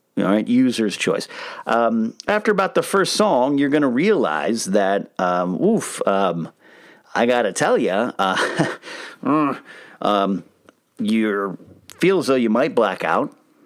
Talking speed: 135 wpm